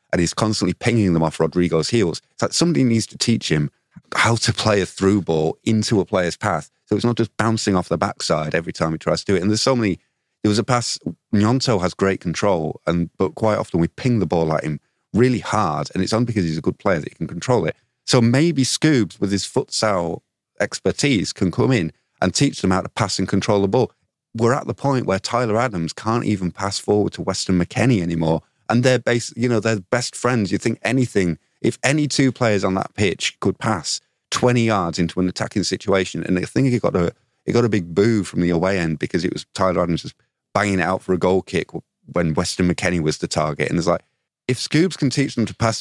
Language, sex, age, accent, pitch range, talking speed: English, male, 30-49, British, 90-120 Hz, 240 wpm